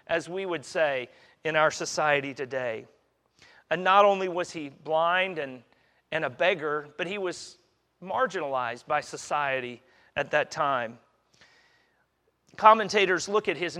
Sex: male